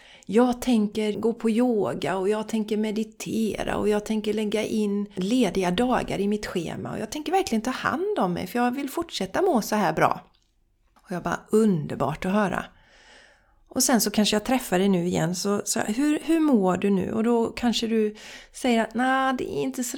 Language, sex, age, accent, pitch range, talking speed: Swedish, female, 40-59, native, 205-255 Hz, 205 wpm